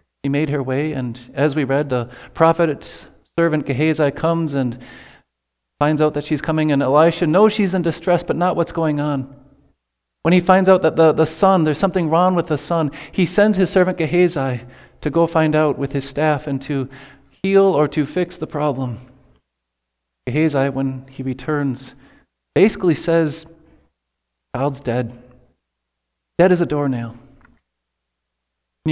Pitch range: 125-160 Hz